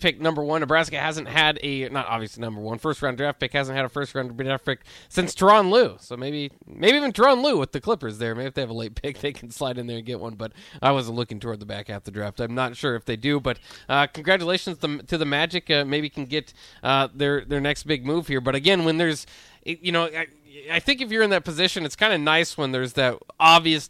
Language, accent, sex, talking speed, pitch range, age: English, American, male, 265 wpm, 130-170 Hz, 20-39